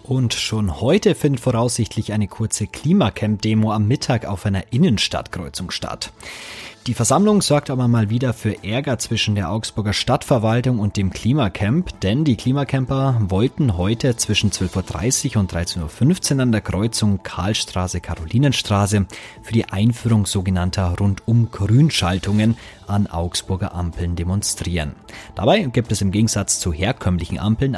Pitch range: 90-120 Hz